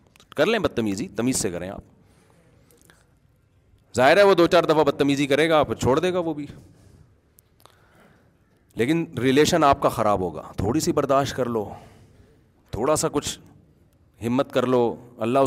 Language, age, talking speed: Urdu, 40-59, 155 wpm